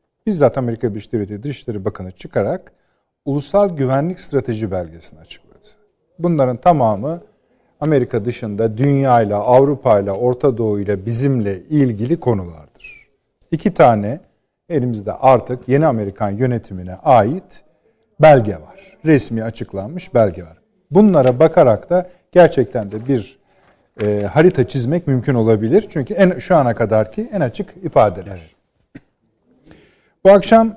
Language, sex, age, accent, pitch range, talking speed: Turkish, male, 50-69, native, 110-160 Hz, 120 wpm